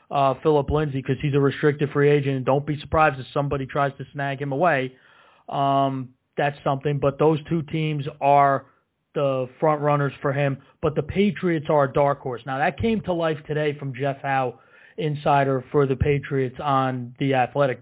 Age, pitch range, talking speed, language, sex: 30-49, 140-175 Hz, 190 wpm, English, male